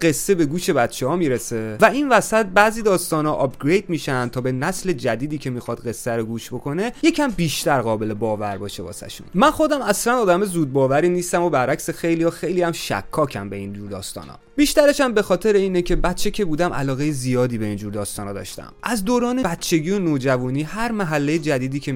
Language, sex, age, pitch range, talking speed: Persian, male, 30-49, 115-170 Hz, 200 wpm